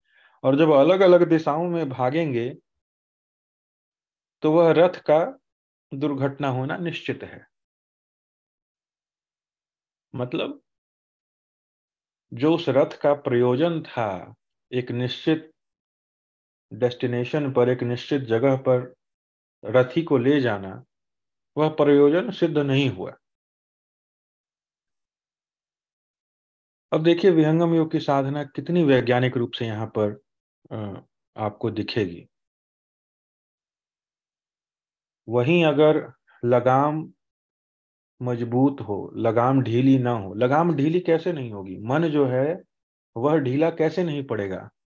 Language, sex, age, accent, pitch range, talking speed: Hindi, male, 40-59, native, 120-160 Hz, 100 wpm